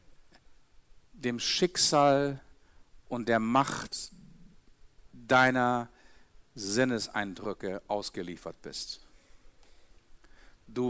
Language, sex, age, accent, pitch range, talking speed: German, male, 50-69, German, 95-125 Hz, 55 wpm